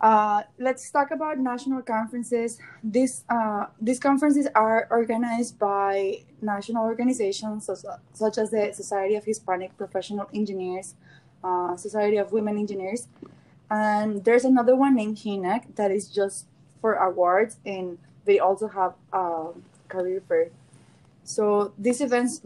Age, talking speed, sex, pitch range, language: 20-39, 130 wpm, female, 195-225 Hz, English